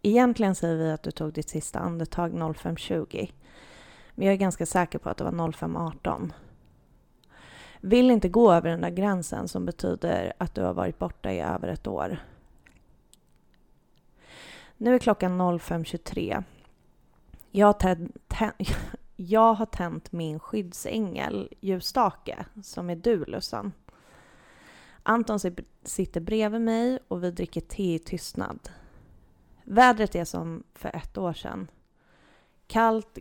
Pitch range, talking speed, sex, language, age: 170-205 Hz, 130 wpm, female, Swedish, 30-49